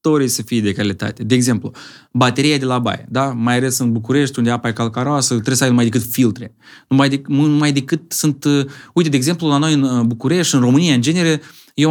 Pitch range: 120-155 Hz